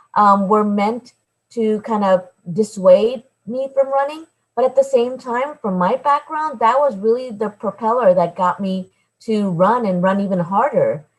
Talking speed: 170 wpm